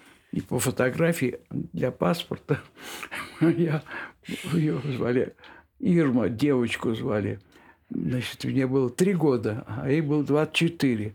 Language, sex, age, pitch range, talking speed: Russian, male, 60-79, 125-160 Hz, 110 wpm